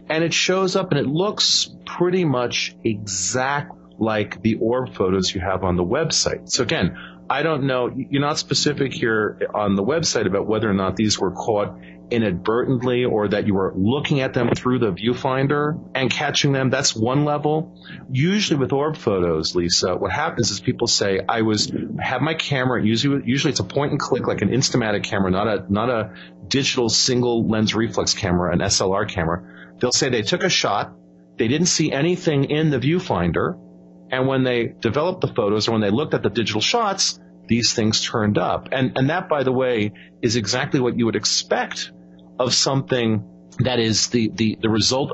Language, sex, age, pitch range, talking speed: English, male, 40-59, 100-140 Hz, 190 wpm